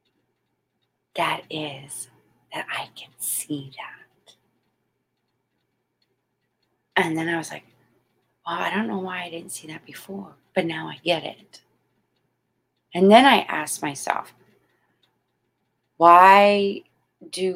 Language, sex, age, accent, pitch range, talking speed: English, female, 30-49, American, 145-180 Hz, 115 wpm